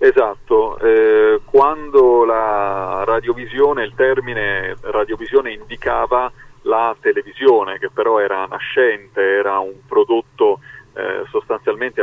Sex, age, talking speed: male, 30-49, 100 wpm